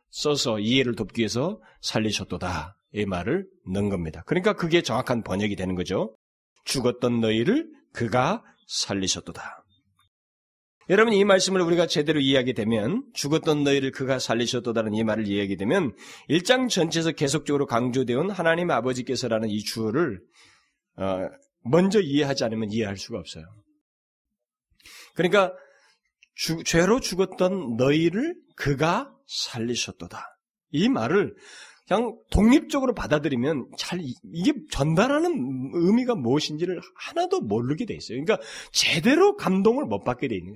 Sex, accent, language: male, native, Korean